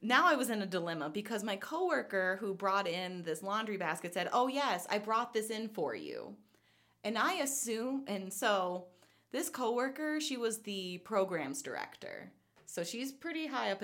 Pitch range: 165-220 Hz